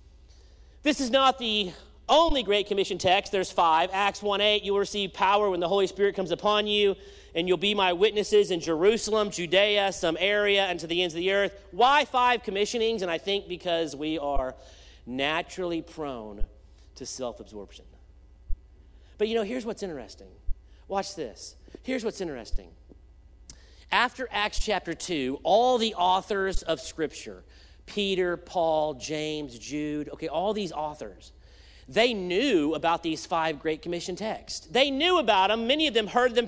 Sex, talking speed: male, 160 wpm